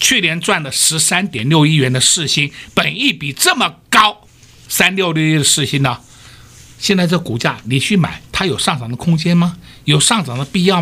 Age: 60-79